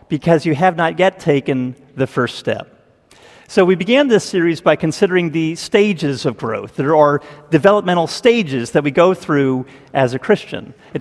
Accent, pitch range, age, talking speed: American, 145-190 Hz, 50-69, 175 wpm